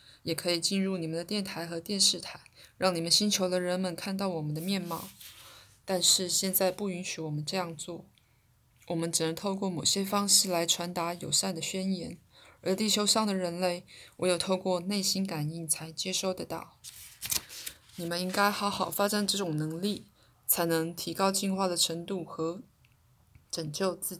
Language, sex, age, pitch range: Chinese, female, 20-39, 165-195 Hz